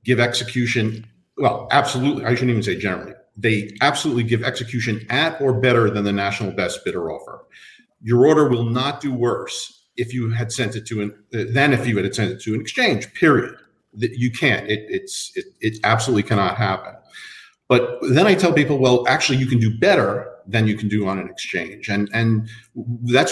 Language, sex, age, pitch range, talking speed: English, male, 50-69, 105-130 Hz, 195 wpm